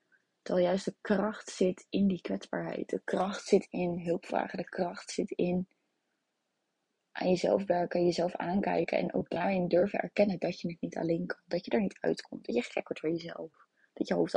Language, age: Dutch, 20-39